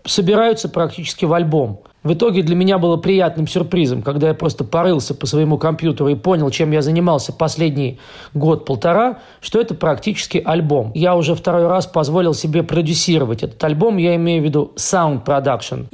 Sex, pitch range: male, 150-175 Hz